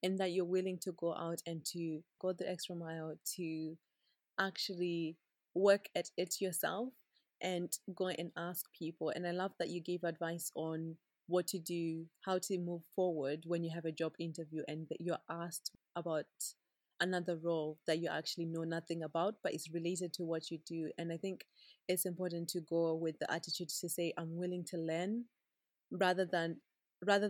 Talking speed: 185 wpm